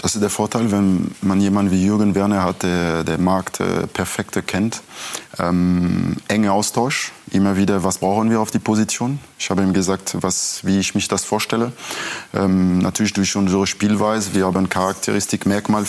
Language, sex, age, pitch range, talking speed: German, male, 20-39, 95-105 Hz, 175 wpm